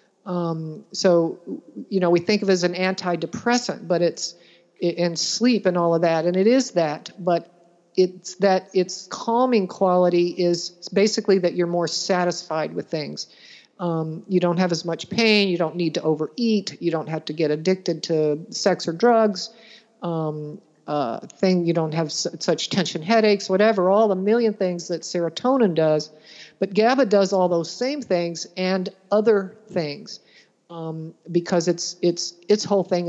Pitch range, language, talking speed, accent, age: 170-205 Hz, English, 165 wpm, American, 50-69